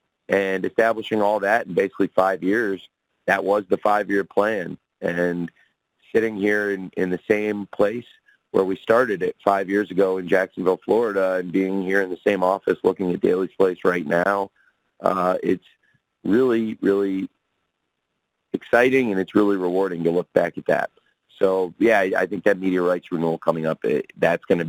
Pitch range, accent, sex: 85-100 Hz, American, male